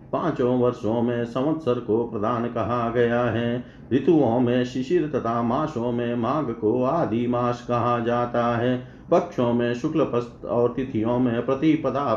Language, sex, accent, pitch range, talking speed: Hindi, male, native, 120-150 Hz, 135 wpm